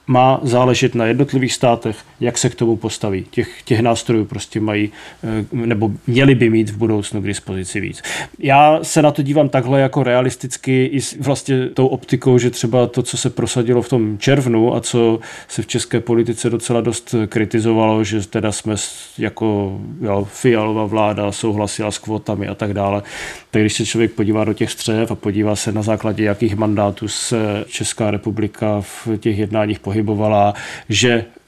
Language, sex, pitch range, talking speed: Czech, male, 105-120 Hz, 170 wpm